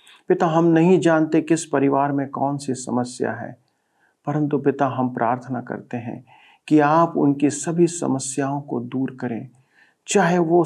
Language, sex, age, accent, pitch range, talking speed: Hindi, male, 50-69, native, 125-165 Hz, 150 wpm